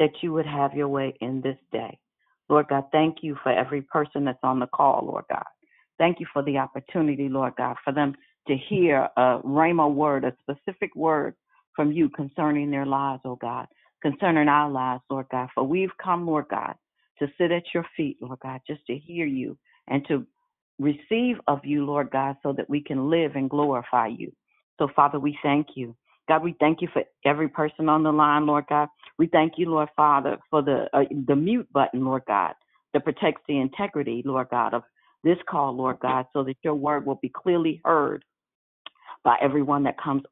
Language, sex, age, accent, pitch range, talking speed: English, female, 50-69, American, 135-155 Hz, 200 wpm